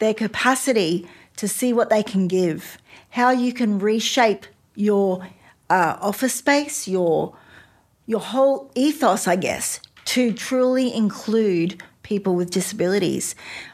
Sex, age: female, 40-59